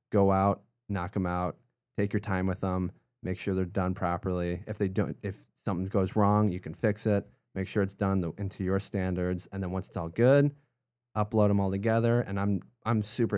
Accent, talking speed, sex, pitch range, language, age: American, 215 wpm, male, 90-120 Hz, English, 20-39